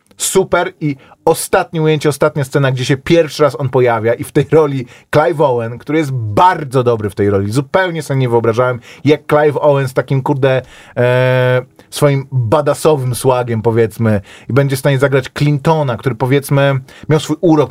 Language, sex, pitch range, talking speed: Polish, male, 115-150 Hz, 175 wpm